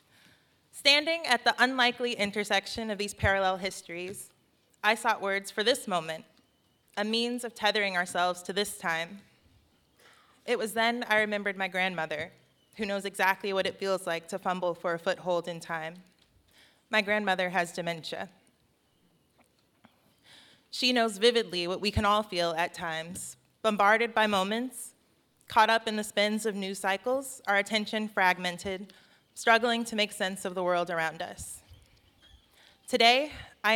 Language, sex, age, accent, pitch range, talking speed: English, female, 20-39, American, 180-220 Hz, 150 wpm